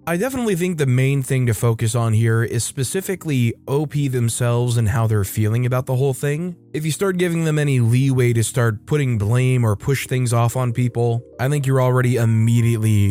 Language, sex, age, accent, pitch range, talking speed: English, male, 20-39, American, 115-150 Hz, 200 wpm